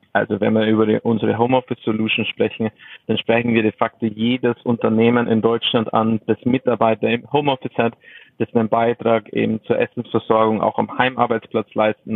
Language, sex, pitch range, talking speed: German, male, 110-120 Hz, 165 wpm